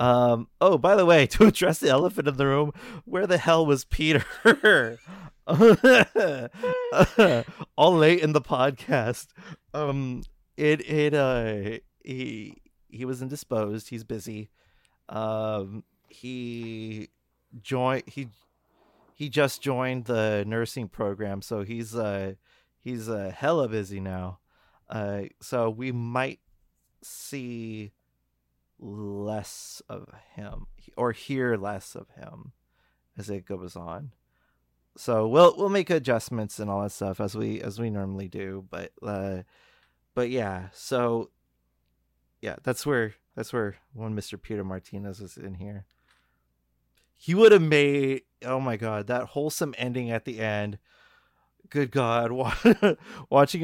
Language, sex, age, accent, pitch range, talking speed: English, male, 30-49, American, 100-140 Hz, 130 wpm